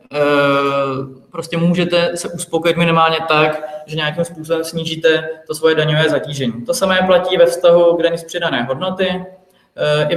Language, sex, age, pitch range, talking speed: Czech, male, 20-39, 155-170 Hz, 160 wpm